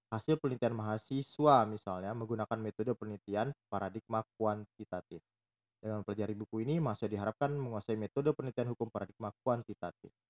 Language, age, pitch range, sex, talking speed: Indonesian, 20-39, 105-135 Hz, male, 120 wpm